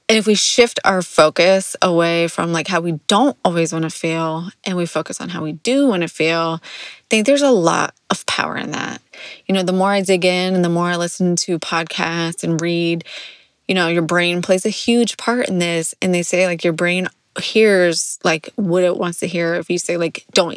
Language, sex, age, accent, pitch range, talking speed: English, female, 20-39, American, 170-195 Hz, 230 wpm